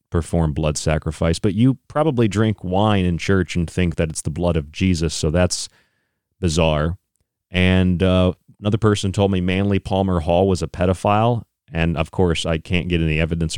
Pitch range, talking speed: 85-105 Hz, 180 wpm